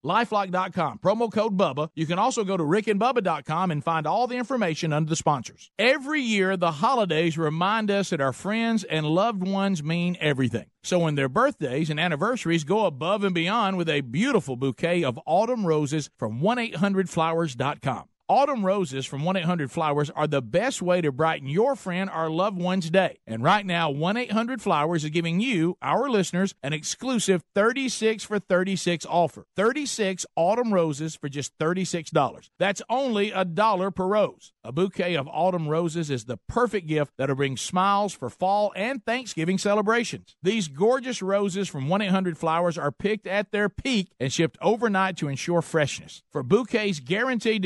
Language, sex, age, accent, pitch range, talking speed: English, male, 50-69, American, 160-210 Hz, 165 wpm